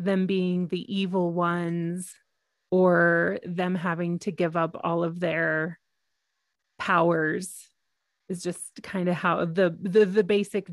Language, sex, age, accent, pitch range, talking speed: English, female, 30-49, American, 175-205 Hz, 135 wpm